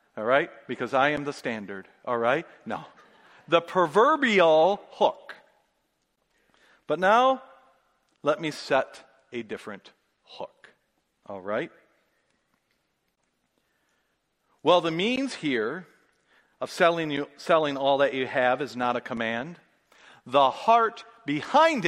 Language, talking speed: English, 115 wpm